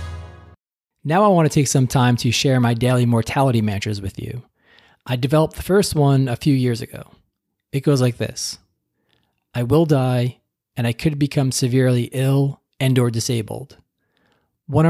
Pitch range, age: 125-150 Hz, 20-39